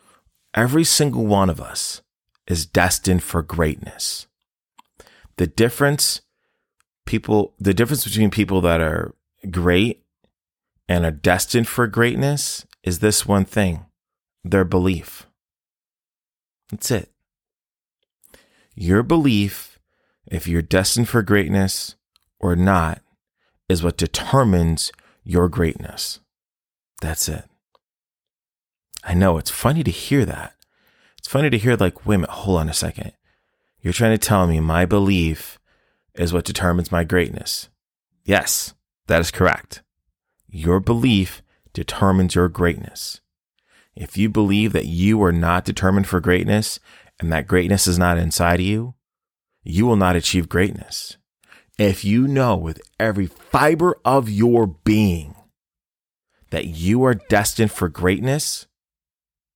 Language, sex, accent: English, male, American